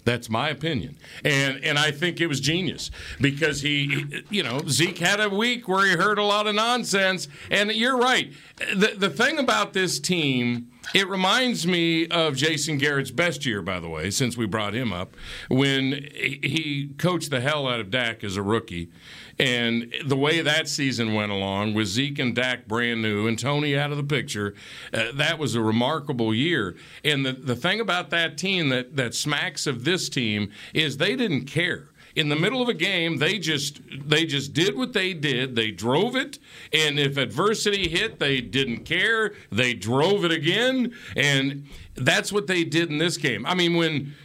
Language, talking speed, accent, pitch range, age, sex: English, 195 wpm, American, 125-175 Hz, 50-69, male